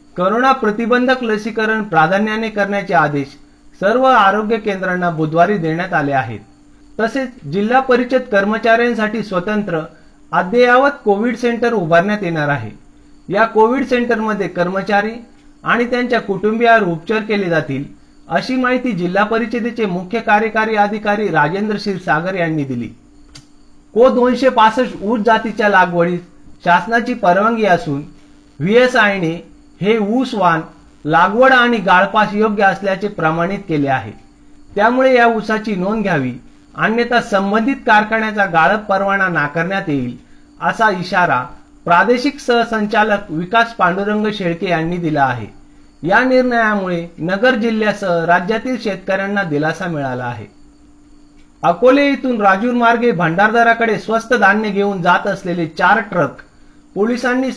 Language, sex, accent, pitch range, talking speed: Marathi, male, native, 170-230 Hz, 115 wpm